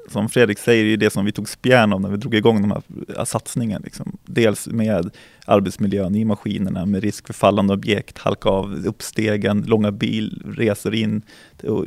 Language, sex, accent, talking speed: Swedish, male, native, 175 wpm